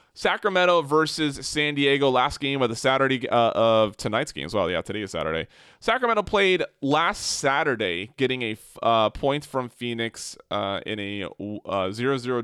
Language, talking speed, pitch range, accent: English, 160 wpm, 110-140 Hz, American